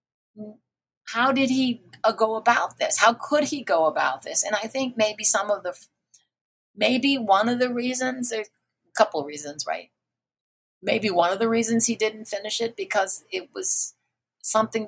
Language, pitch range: English, 170-235 Hz